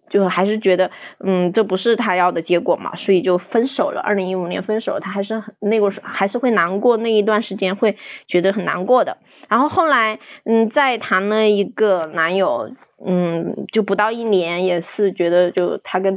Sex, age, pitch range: female, 20-39, 190-245 Hz